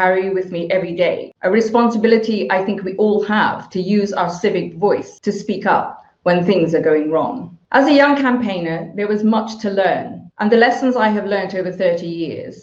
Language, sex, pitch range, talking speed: English, female, 180-235 Hz, 205 wpm